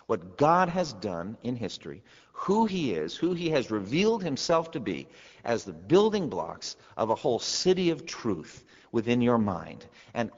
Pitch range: 100-145 Hz